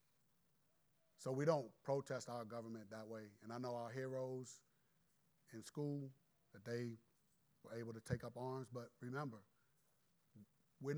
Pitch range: 115-145 Hz